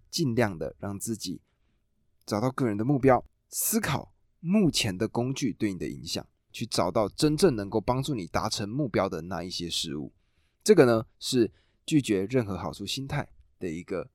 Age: 20-39